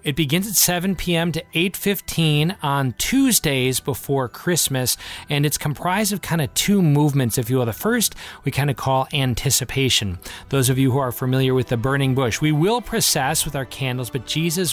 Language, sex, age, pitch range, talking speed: English, male, 40-59, 130-160 Hz, 190 wpm